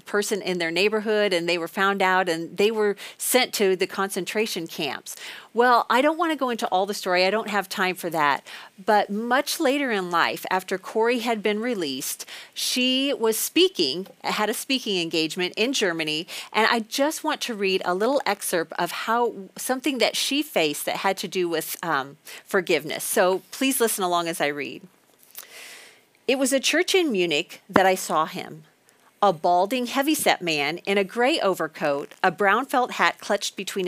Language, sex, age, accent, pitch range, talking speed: English, female, 40-59, American, 185-245 Hz, 185 wpm